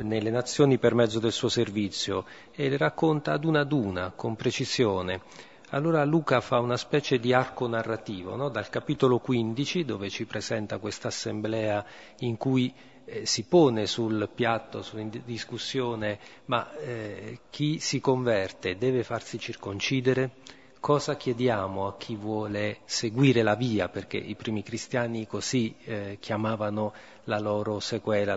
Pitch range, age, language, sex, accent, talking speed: 105-130 Hz, 40-59, Italian, male, native, 140 wpm